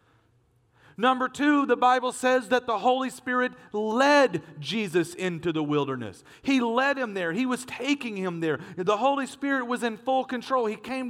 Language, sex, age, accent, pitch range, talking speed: English, male, 40-59, American, 160-235 Hz, 175 wpm